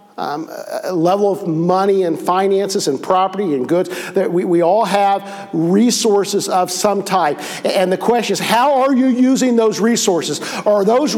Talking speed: 170 wpm